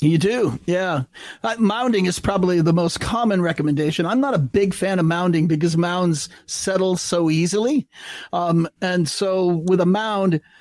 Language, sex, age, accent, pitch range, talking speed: English, male, 40-59, American, 155-180 Hz, 160 wpm